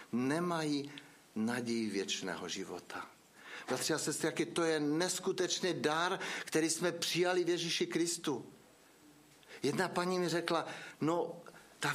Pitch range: 145-200 Hz